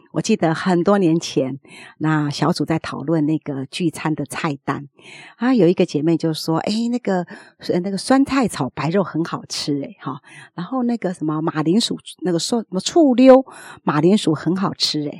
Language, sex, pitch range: Chinese, female, 155-210 Hz